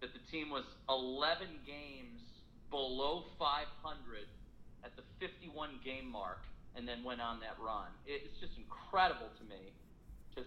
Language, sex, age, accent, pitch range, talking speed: English, male, 40-59, American, 115-135 Hz, 145 wpm